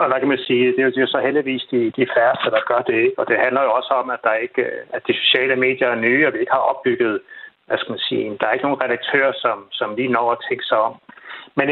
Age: 60-79